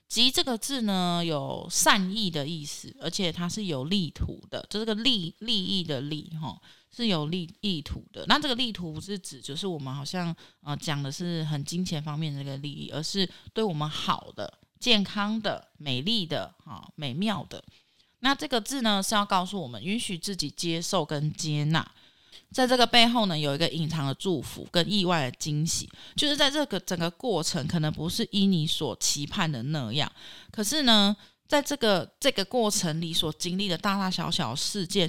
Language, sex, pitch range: Chinese, female, 155-205 Hz